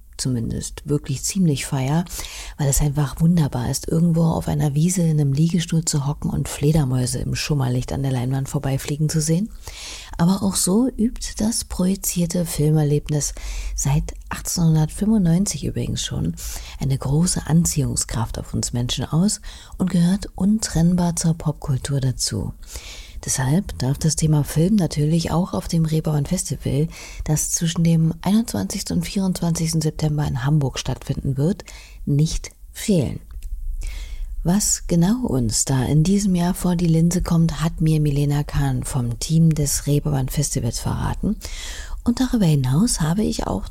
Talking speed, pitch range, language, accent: 140 wpm, 135-175 Hz, German, German